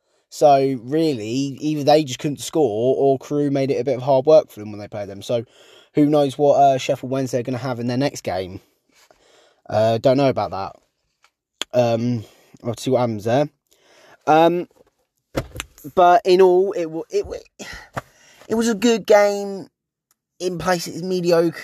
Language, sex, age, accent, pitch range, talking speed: English, male, 20-39, British, 130-160 Hz, 175 wpm